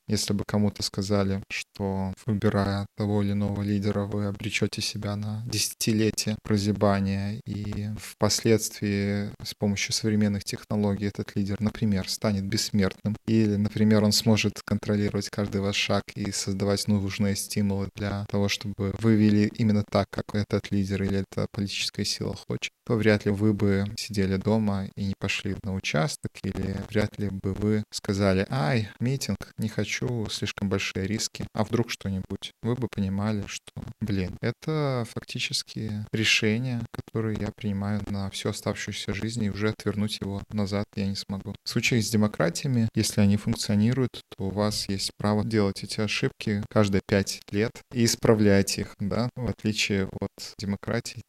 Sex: male